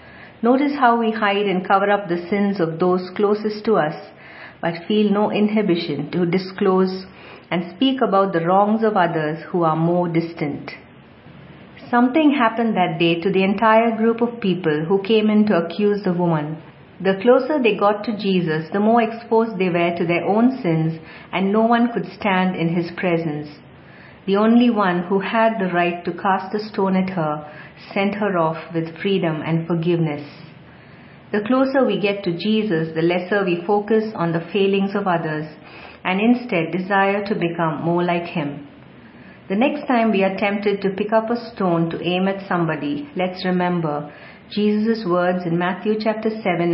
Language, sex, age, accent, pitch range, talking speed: English, female, 50-69, Indian, 170-210 Hz, 175 wpm